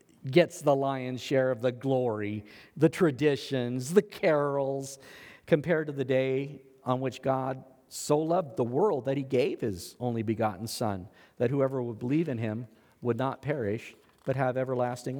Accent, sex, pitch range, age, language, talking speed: American, male, 120-160 Hz, 50-69, English, 160 wpm